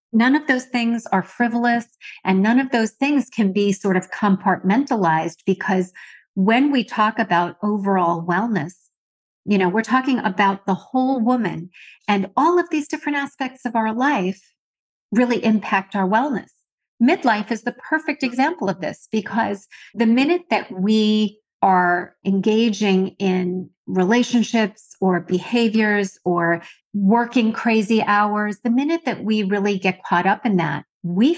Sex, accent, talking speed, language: female, American, 145 wpm, English